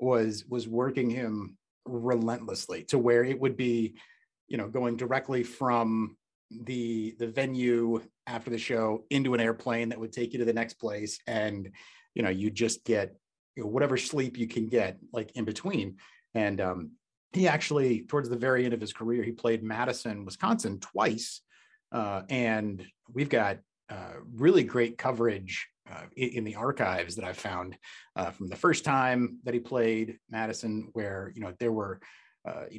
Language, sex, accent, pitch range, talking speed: English, male, American, 110-125 Hz, 175 wpm